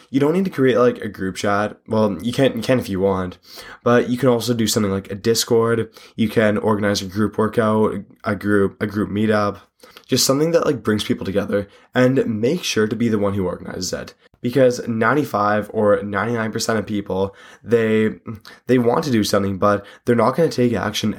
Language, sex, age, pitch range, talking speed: English, male, 20-39, 100-120 Hz, 205 wpm